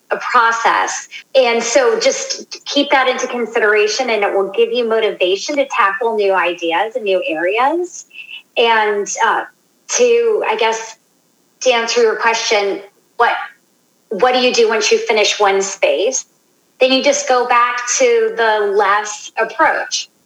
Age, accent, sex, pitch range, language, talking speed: 30-49, American, female, 210-270 Hz, English, 150 wpm